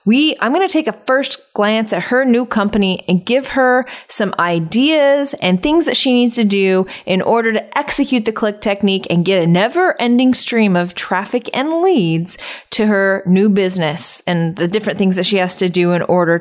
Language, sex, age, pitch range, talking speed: English, female, 20-39, 185-235 Hz, 200 wpm